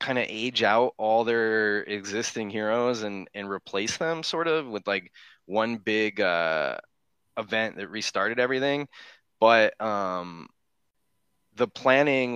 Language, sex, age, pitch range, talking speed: English, male, 20-39, 95-125 Hz, 130 wpm